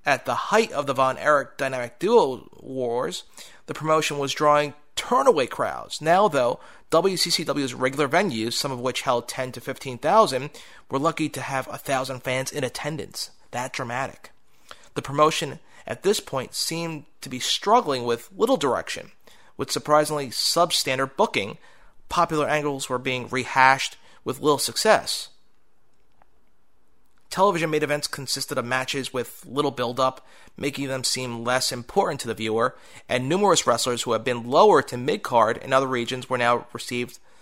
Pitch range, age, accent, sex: 125-150 Hz, 30-49, American, male